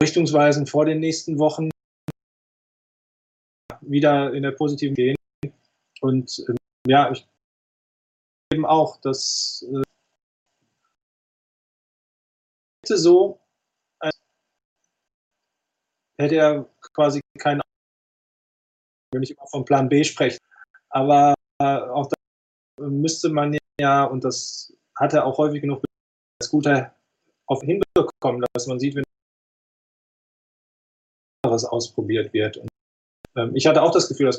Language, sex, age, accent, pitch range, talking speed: German, male, 20-39, German, 120-150 Hz, 115 wpm